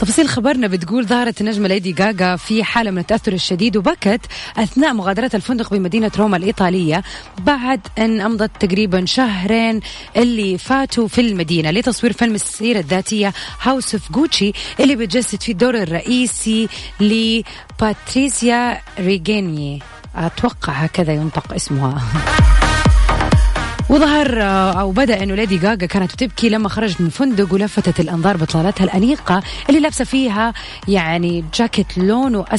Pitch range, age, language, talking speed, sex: 185-240 Hz, 30-49, Arabic, 125 wpm, female